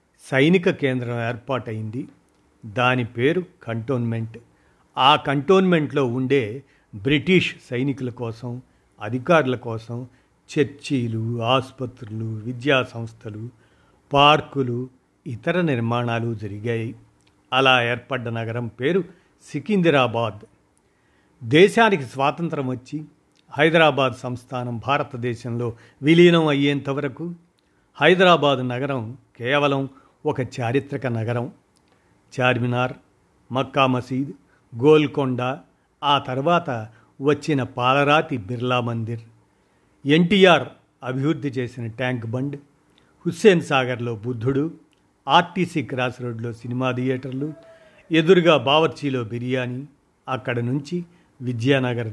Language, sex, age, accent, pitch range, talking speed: Telugu, male, 50-69, native, 120-150 Hz, 80 wpm